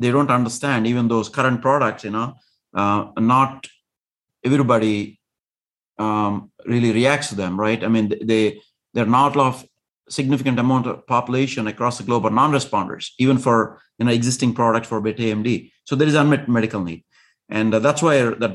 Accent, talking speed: Indian, 170 wpm